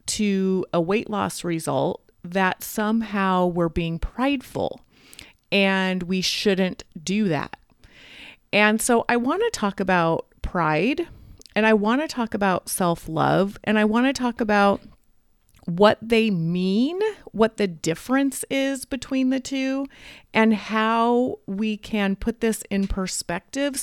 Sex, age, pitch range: female, 30-49, 185-230 Hz